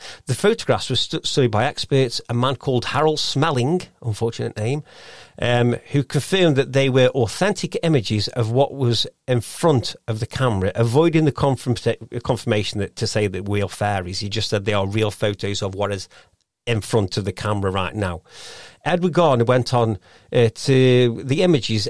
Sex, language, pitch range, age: male, English, 110-140 Hz, 40-59